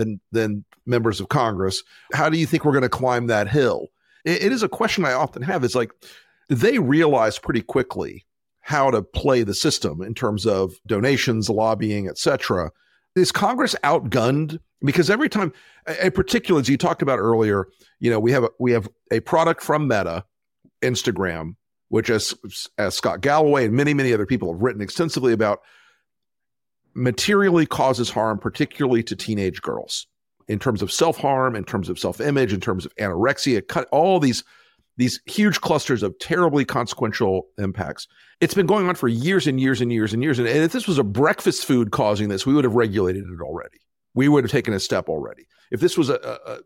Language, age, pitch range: English, 50-69, 105-150 Hz